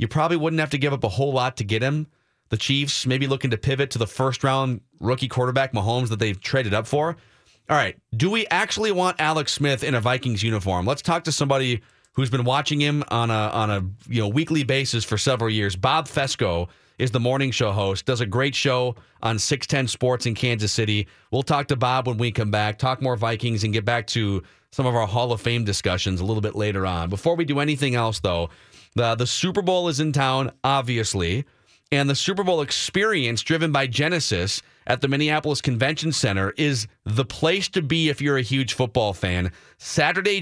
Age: 30-49